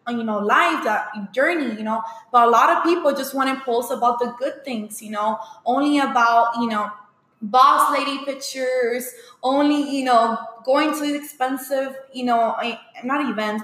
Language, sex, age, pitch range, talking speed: English, female, 20-39, 225-270 Hz, 170 wpm